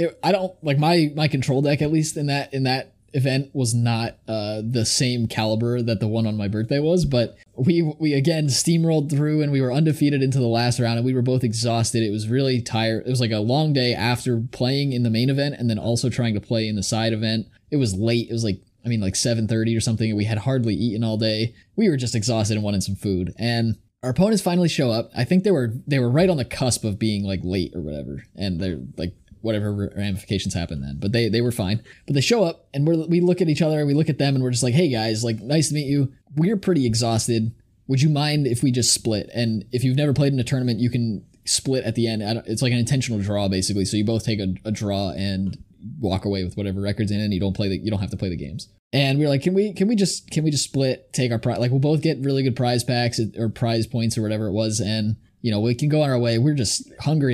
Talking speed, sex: 270 wpm, male